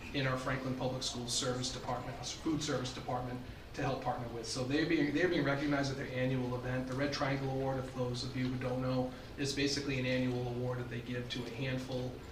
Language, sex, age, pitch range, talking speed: English, male, 30-49, 125-150 Hz, 225 wpm